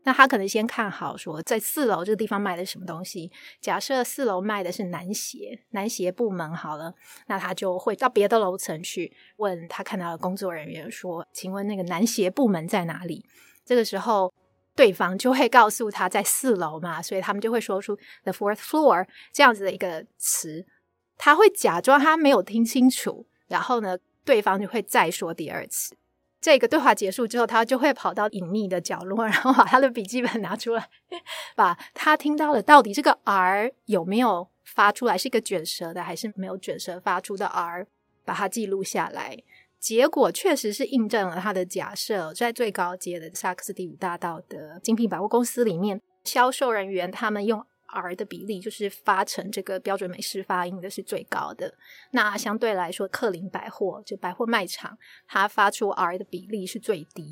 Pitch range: 185-235 Hz